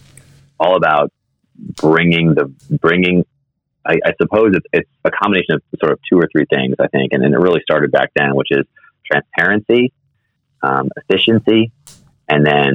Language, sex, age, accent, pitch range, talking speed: English, male, 30-49, American, 70-110 Hz, 165 wpm